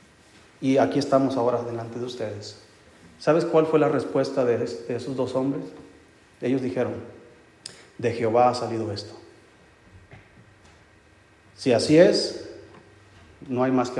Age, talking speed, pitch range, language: 40-59, 130 wpm, 110-150 Hz, Spanish